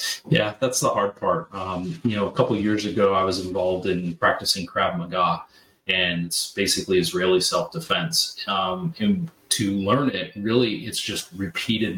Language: English